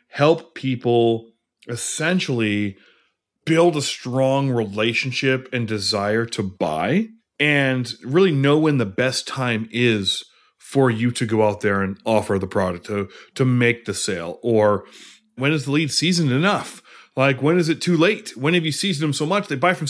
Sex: male